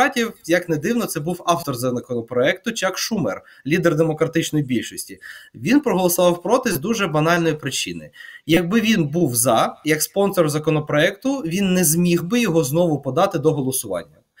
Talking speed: 145 wpm